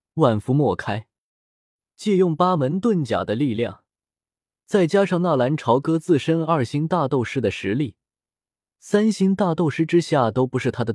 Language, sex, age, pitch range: Chinese, male, 20-39, 110-160 Hz